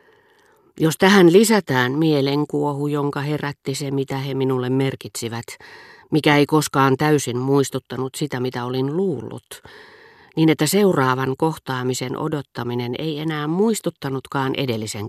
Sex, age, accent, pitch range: female, 40-59, native, 125-155 Hz